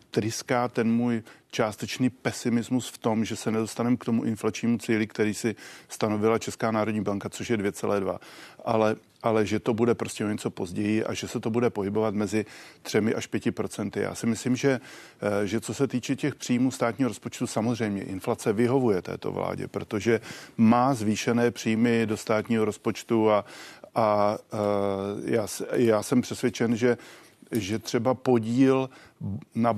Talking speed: 155 wpm